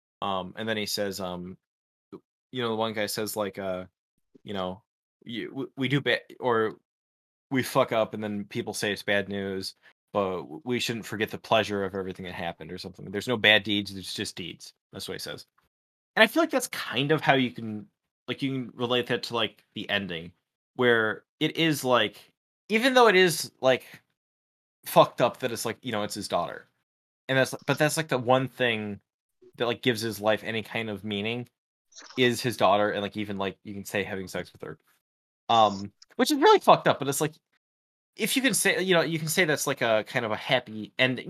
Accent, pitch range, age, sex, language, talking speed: American, 100-130 Hz, 20-39, male, English, 215 wpm